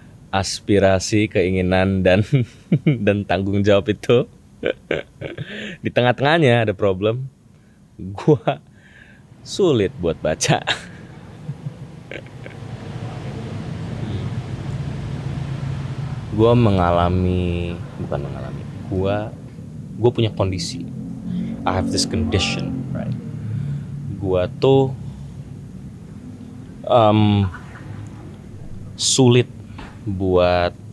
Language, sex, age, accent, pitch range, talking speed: Indonesian, male, 20-39, native, 90-120 Hz, 65 wpm